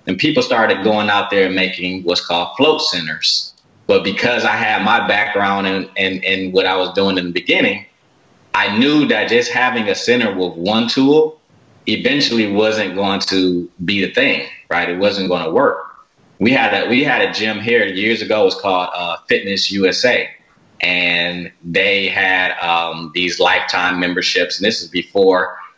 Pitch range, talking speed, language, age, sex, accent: 90-105 Hz, 175 wpm, English, 30-49, male, American